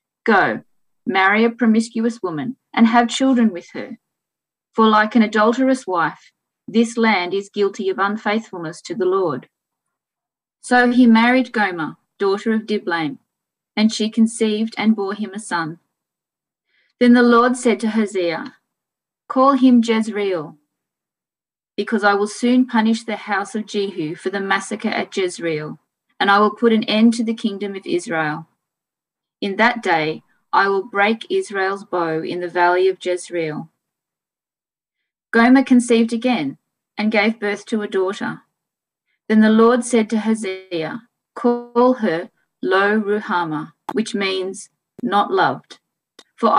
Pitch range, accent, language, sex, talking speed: 195-235 Hz, Australian, English, female, 140 wpm